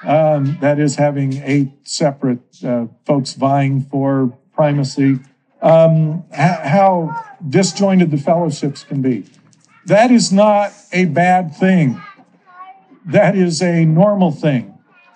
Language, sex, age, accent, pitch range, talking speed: English, male, 50-69, American, 145-190 Hz, 120 wpm